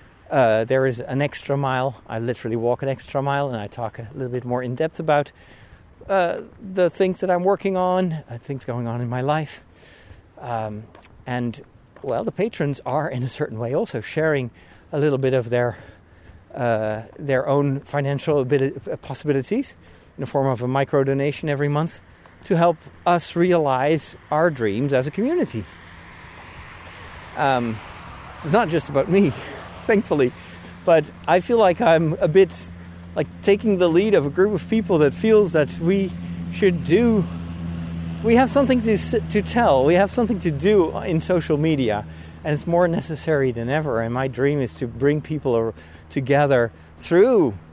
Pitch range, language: 115-165 Hz, English